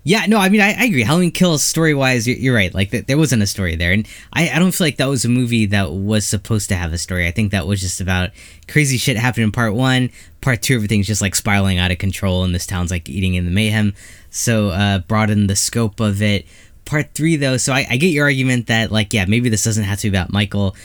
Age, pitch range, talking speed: 10-29, 95-125 Hz, 265 wpm